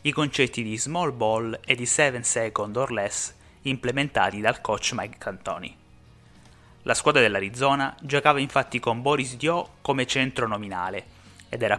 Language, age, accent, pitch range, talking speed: Italian, 30-49, native, 110-140 Hz, 150 wpm